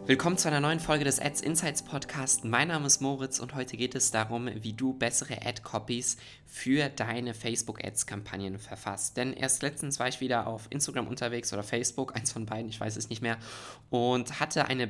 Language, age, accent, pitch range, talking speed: German, 20-39, German, 110-130 Hz, 195 wpm